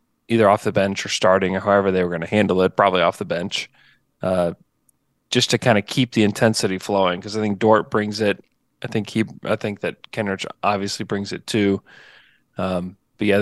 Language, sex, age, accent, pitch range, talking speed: English, male, 20-39, American, 100-115 Hz, 210 wpm